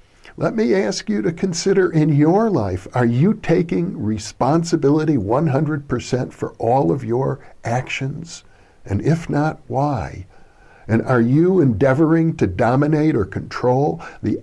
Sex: male